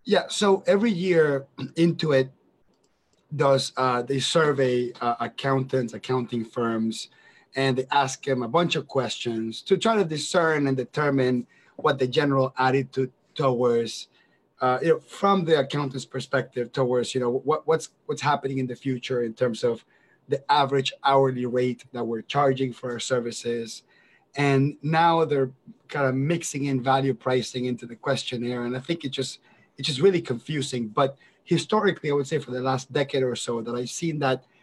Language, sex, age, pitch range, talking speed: English, male, 30-49, 125-155 Hz, 170 wpm